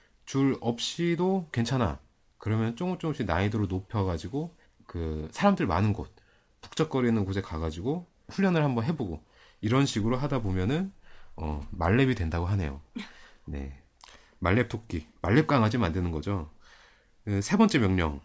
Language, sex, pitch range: Korean, male, 90-150 Hz